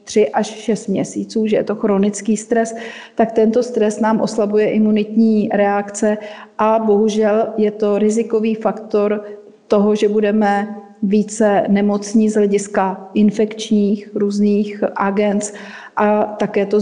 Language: Czech